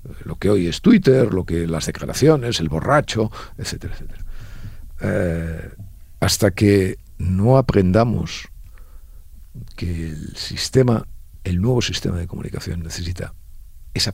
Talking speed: 110 wpm